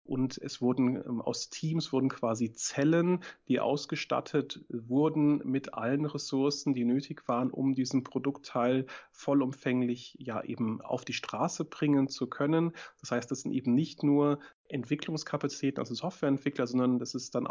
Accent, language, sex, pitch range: German, German, male, 130-150 Hz